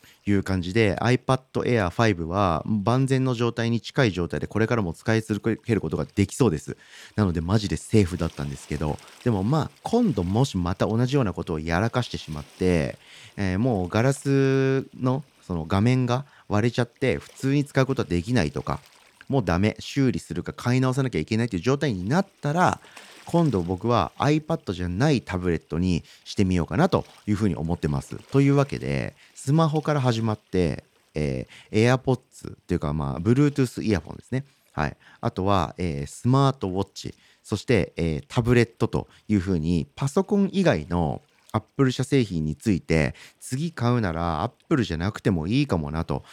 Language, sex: Japanese, male